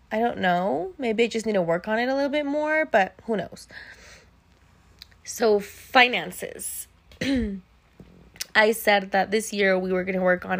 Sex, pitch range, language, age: female, 180-250 Hz, English, 20-39